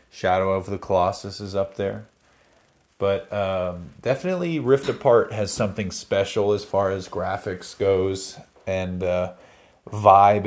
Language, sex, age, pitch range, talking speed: English, male, 30-49, 95-115 Hz, 130 wpm